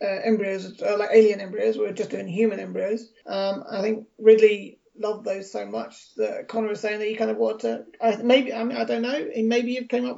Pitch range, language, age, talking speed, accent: 205-240 Hz, English, 30-49, 235 wpm, British